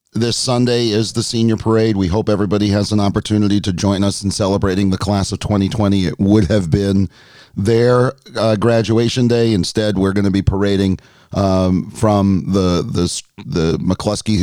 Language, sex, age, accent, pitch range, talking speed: English, male, 40-59, American, 95-115 Hz, 165 wpm